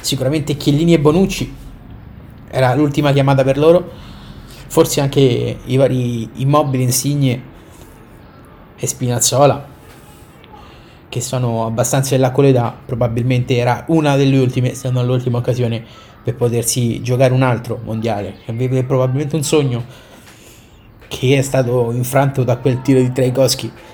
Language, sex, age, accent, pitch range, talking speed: Italian, male, 30-49, native, 115-135 Hz, 130 wpm